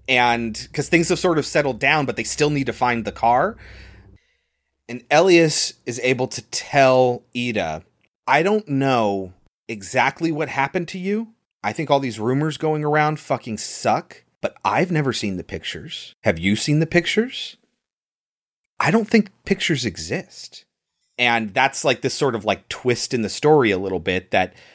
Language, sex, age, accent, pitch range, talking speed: English, male, 30-49, American, 120-175 Hz, 170 wpm